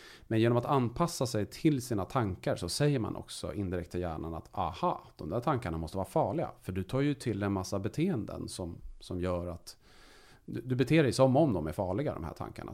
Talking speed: 215 wpm